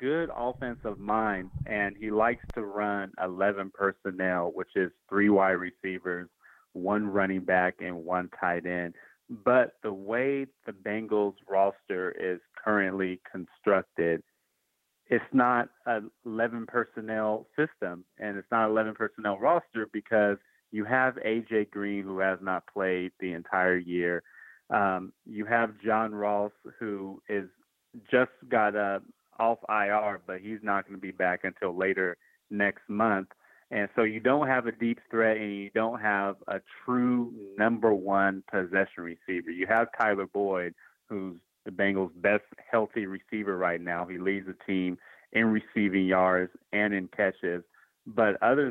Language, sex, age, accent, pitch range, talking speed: English, male, 30-49, American, 95-110 Hz, 150 wpm